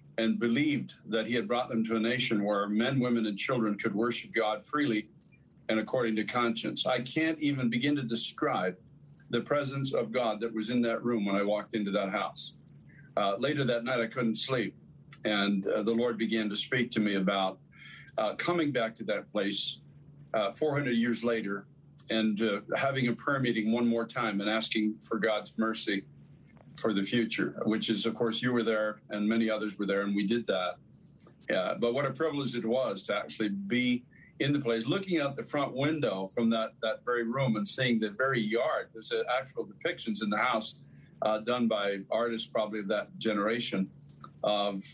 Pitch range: 105-125 Hz